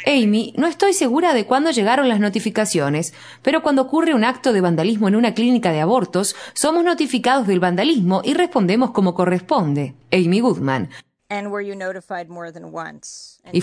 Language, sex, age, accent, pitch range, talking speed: Spanish, female, 20-39, Argentinian, 170-245 Hz, 140 wpm